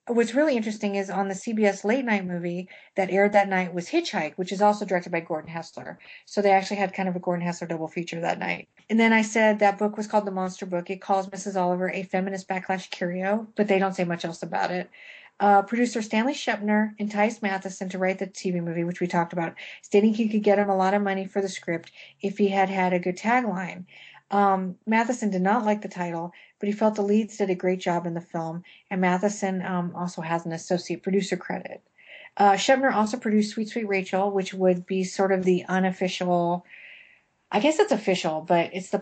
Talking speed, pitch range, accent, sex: 225 wpm, 180-210 Hz, American, female